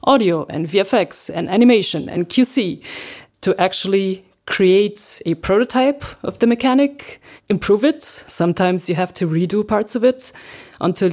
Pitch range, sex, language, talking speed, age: 170-210 Hz, female, English, 140 wpm, 30-49